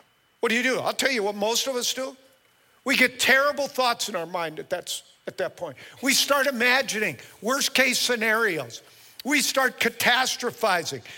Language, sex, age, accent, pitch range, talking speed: English, male, 50-69, American, 215-265 Hz, 175 wpm